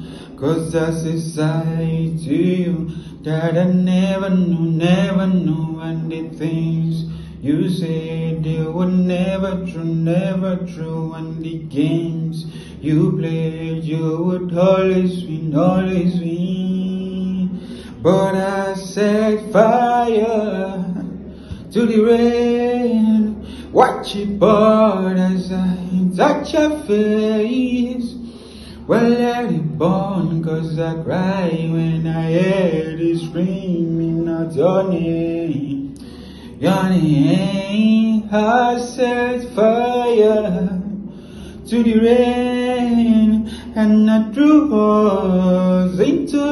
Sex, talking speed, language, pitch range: male, 100 wpm, English, 165-215 Hz